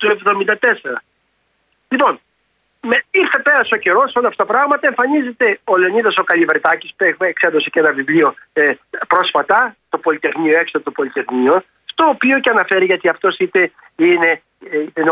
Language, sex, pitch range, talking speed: Greek, male, 190-290 Hz, 160 wpm